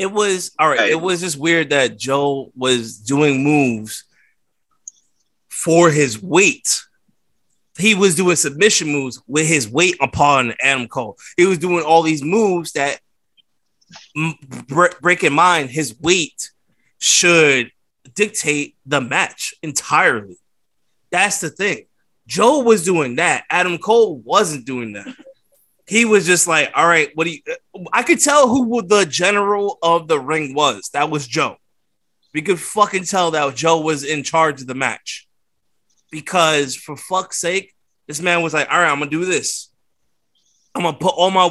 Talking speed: 160 wpm